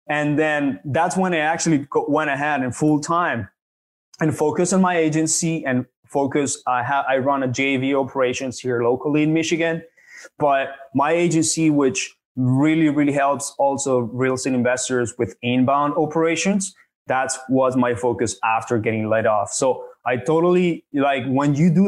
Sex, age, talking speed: male, 20-39, 155 wpm